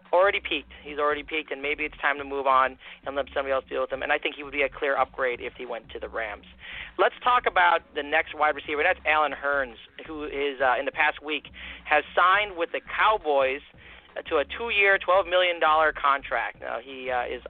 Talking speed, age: 230 wpm, 40-59